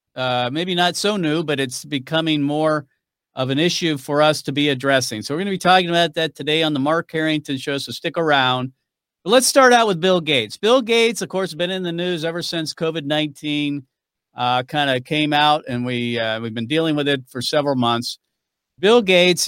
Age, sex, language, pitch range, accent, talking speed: 50-69, male, English, 135-165 Hz, American, 220 wpm